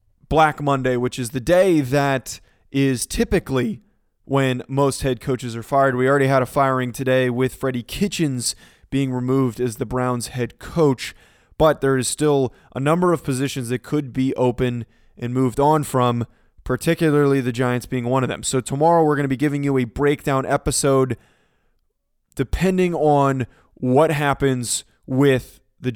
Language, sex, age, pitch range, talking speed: English, male, 20-39, 125-145 Hz, 165 wpm